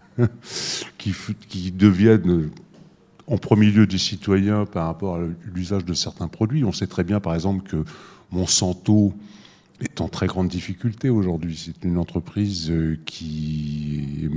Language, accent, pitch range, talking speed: French, French, 90-110 Hz, 140 wpm